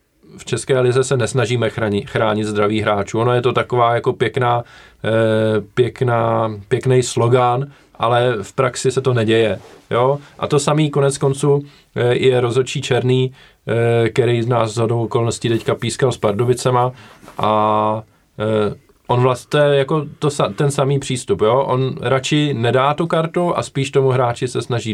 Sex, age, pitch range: male, 20-39, 115-135 Hz